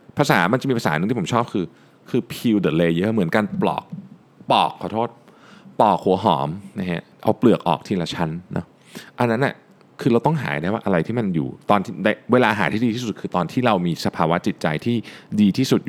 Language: Thai